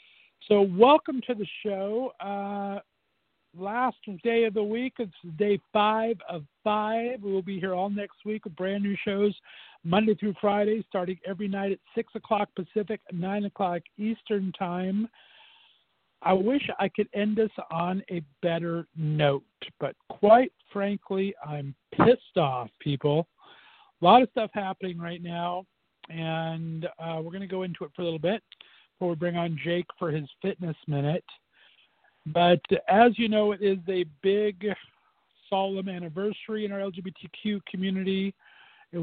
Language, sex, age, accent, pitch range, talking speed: English, male, 50-69, American, 165-205 Hz, 155 wpm